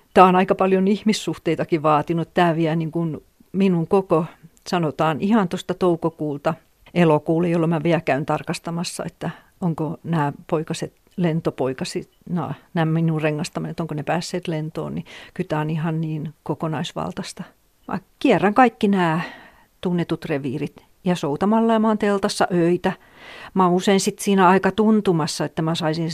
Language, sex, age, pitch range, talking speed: Finnish, female, 50-69, 160-190 Hz, 145 wpm